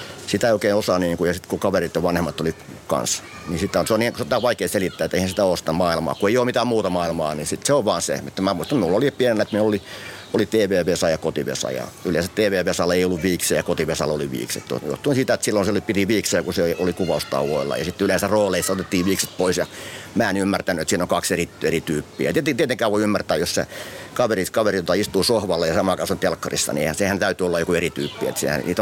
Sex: male